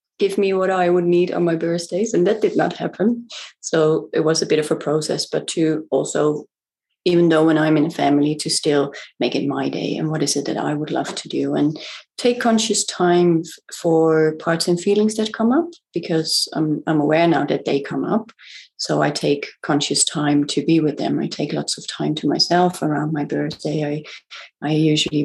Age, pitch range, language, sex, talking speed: 30-49, 155-185 Hz, English, female, 215 wpm